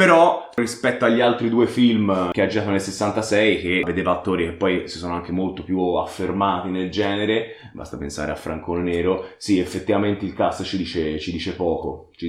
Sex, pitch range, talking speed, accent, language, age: male, 95-125 Hz, 175 wpm, native, Italian, 20-39